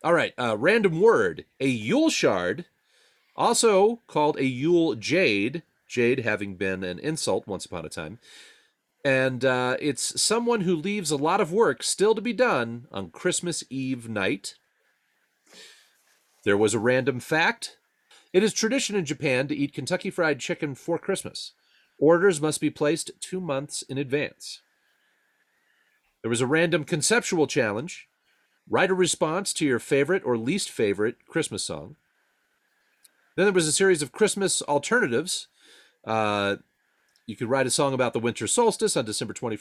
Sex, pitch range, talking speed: male, 120-180 Hz, 155 wpm